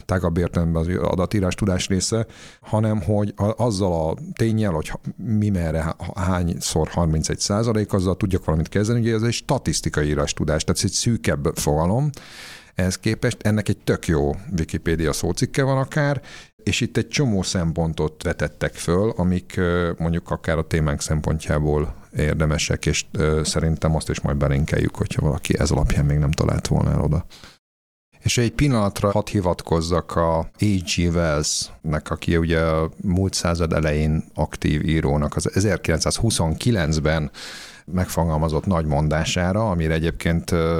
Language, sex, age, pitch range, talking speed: Hungarian, male, 50-69, 80-100 Hz, 140 wpm